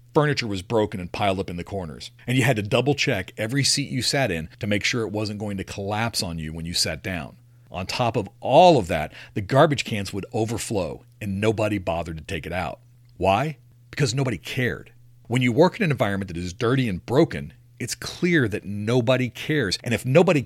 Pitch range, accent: 95-125 Hz, American